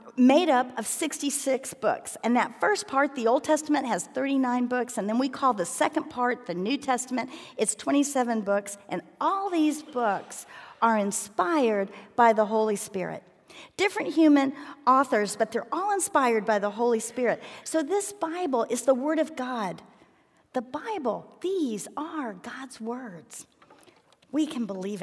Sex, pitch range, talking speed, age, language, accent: female, 220-280 Hz, 160 wpm, 50-69, English, American